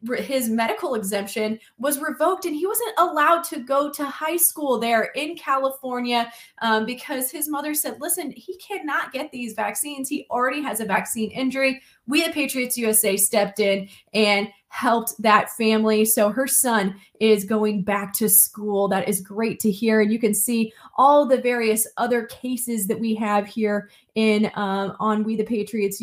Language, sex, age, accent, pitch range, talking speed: English, female, 20-39, American, 200-245 Hz, 175 wpm